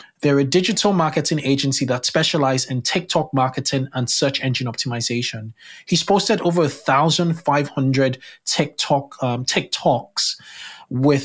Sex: male